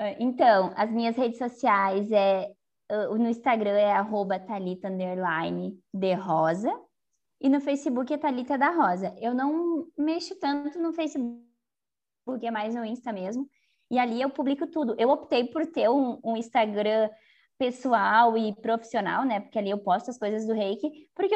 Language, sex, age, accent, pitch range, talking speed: Portuguese, female, 20-39, Brazilian, 200-250 Hz, 155 wpm